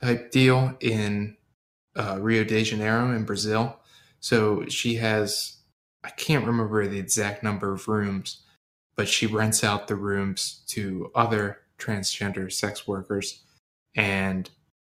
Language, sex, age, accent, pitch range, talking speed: English, male, 10-29, American, 100-115 Hz, 130 wpm